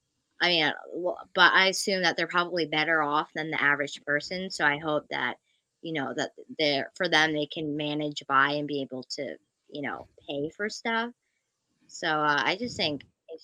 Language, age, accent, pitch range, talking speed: English, 20-39, American, 150-195 Hz, 190 wpm